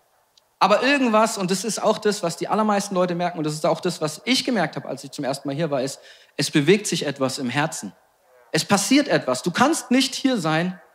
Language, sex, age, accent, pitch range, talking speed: German, male, 40-59, German, 150-205 Hz, 235 wpm